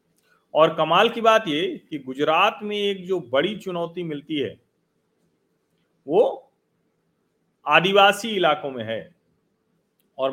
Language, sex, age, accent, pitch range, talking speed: Hindi, male, 40-59, native, 145-195 Hz, 115 wpm